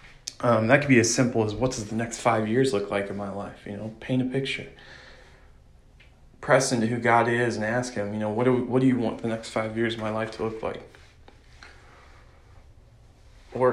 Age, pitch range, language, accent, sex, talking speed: 20-39, 105-125 Hz, English, American, male, 215 wpm